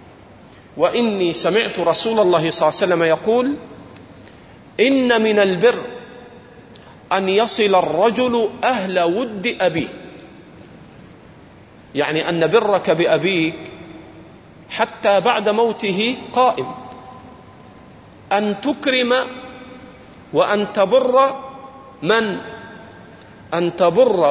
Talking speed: 80 wpm